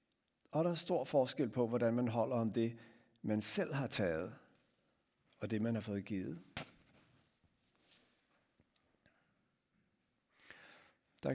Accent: native